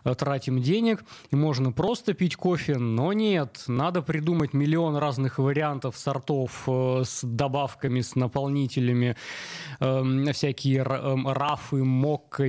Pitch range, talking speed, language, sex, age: 130-165 Hz, 125 wpm, Russian, male, 20-39